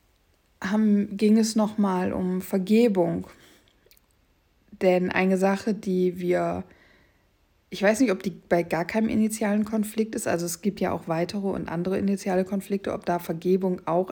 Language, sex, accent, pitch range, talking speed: German, female, German, 185-205 Hz, 155 wpm